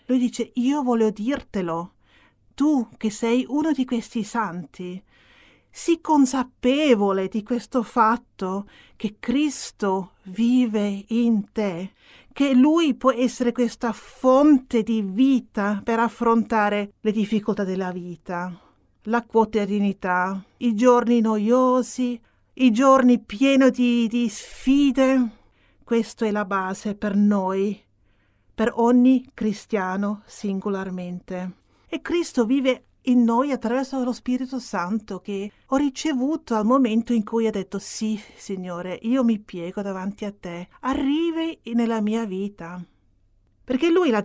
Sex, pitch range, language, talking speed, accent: female, 200-250 Hz, Italian, 120 wpm, native